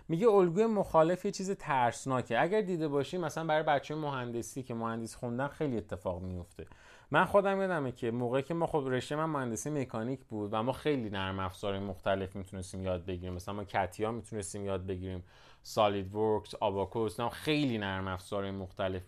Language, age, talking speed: Persian, 30-49, 165 wpm